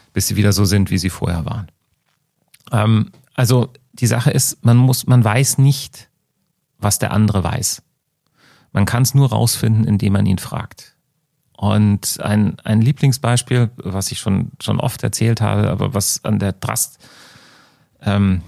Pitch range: 100-130 Hz